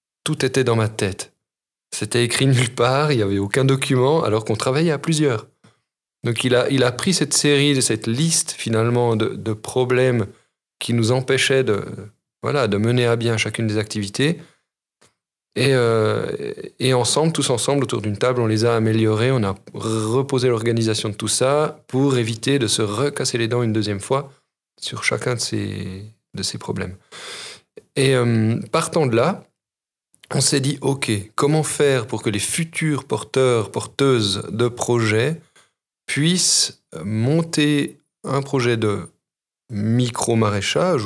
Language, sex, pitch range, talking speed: French, male, 110-140 Hz, 155 wpm